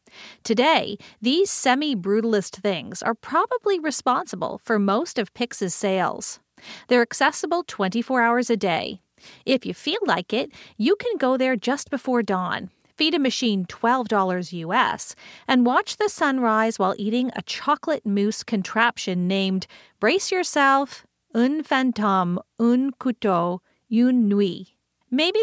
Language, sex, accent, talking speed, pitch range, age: English, female, American, 130 wpm, 205-290 Hz, 40-59